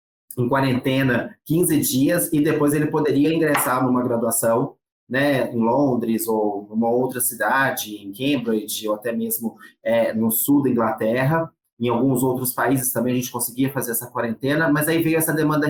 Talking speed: 170 wpm